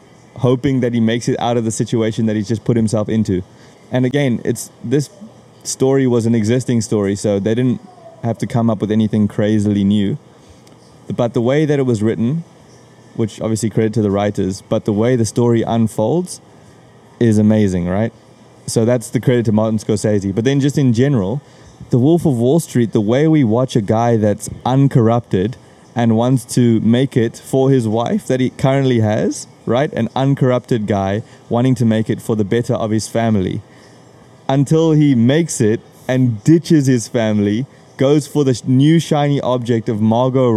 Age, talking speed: 20-39, 185 wpm